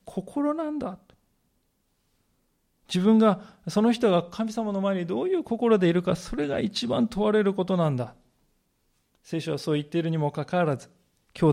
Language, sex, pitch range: Japanese, male, 145-200 Hz